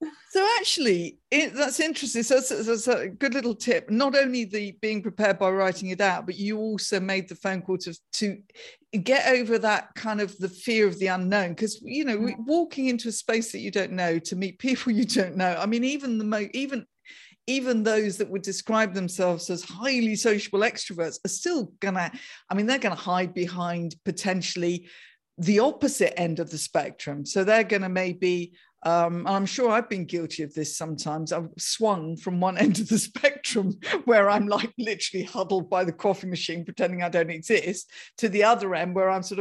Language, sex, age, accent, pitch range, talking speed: English, female, 50-69, British, 185-245 Hz, 205 wpm